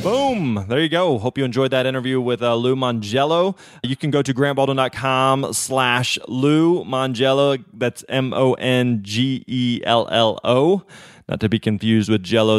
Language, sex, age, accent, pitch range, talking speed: English, male, 20-39, American, 110-140 Hz, 170 wpm